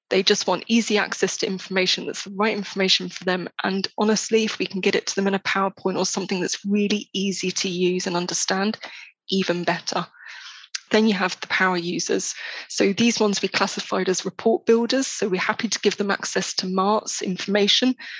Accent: British